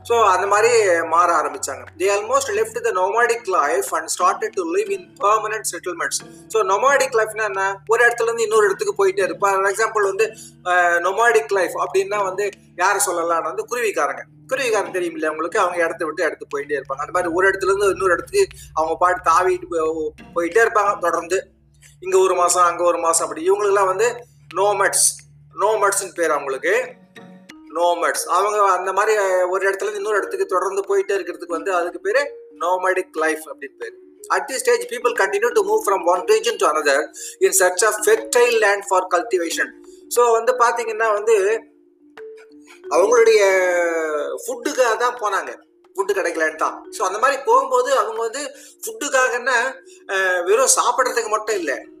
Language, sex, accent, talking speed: Tamil, male, native, 130 wpm